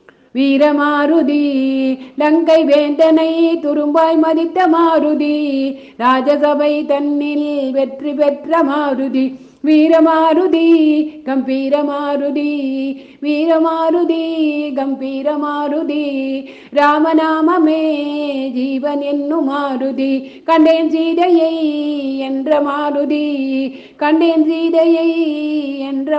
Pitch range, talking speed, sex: 285-320 Hz, 45 wpm, female